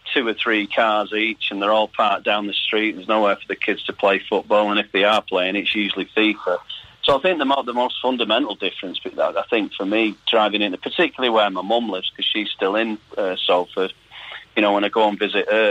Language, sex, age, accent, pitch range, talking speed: English, male, 40-59, British, 105-115 Hz, 235 wpm